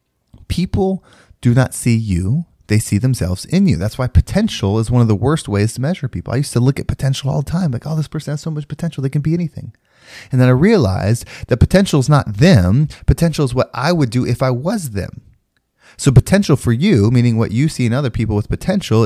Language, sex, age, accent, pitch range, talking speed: English, male, 30-49, American, 105-135 Hz, 235 wpm